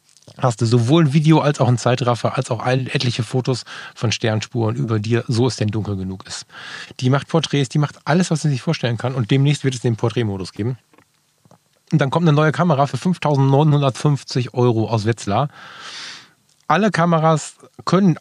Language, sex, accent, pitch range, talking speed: German, male, German, 120-160 Hz, 180 wpm